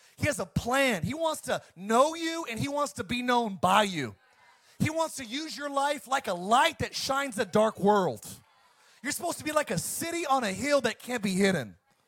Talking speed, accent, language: 225 wpm, American, English